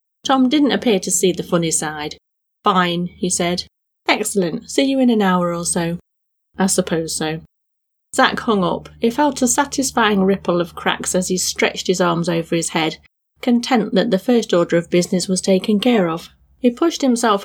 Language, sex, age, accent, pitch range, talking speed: English, female, 30-49, British, 170-230 Hz, 185 wpm